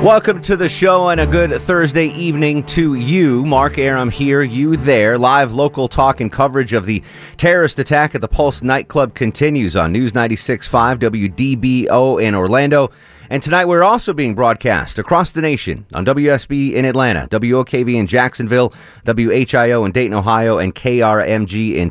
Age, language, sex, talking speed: 30-49, English, male, 160 wpm